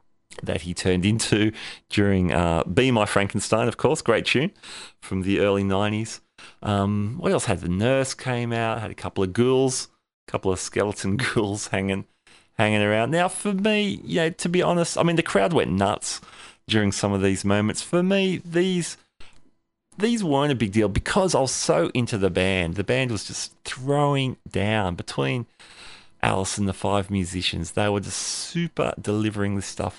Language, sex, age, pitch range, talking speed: English, male, 40-59, 95-125 Hz, 180 wpm